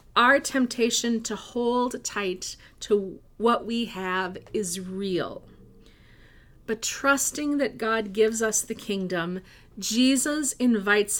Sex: female